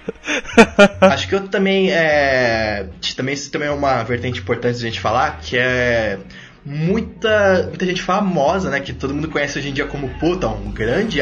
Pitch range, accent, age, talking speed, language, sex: 120-170 Hz, Brazilian, 20-39, 180 wpm, Portuguese, male